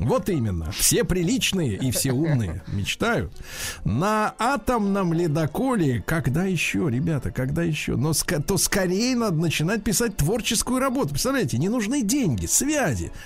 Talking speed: 135 wpm